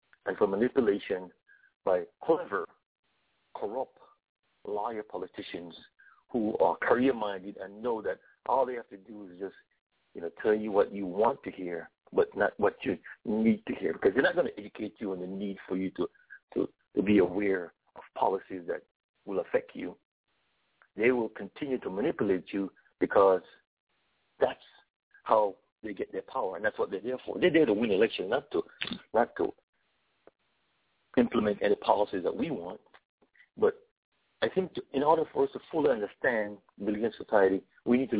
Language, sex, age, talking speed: English, male, 60-79, 175 wpm